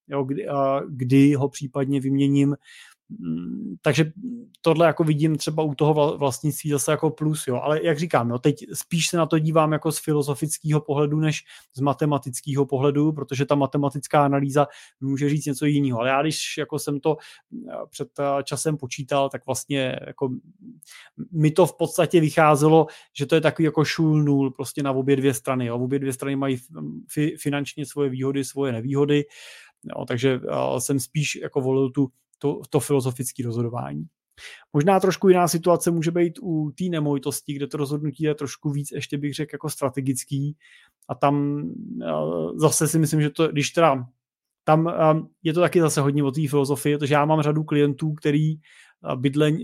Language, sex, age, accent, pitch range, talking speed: Czech, male, 20-39, native, 140-155 Hz, 165 wpm